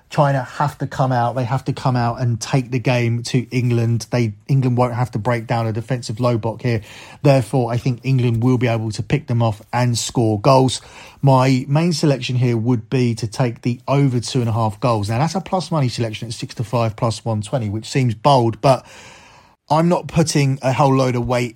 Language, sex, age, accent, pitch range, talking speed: English, male, 30-49, British, 115-135 Hz, 225 wpm